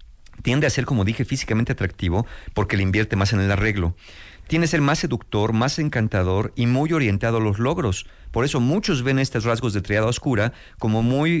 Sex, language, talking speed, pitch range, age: male, Spanish, 195 wpm, 100-135 Hz, 50-69